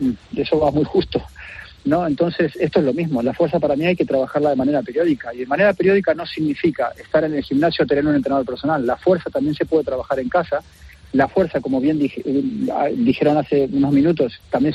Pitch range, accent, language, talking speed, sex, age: 140-175 Hz, Argentinian, Spanish, 210 wpm, male, 40-59